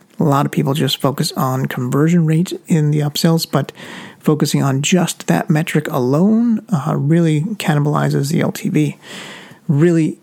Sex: male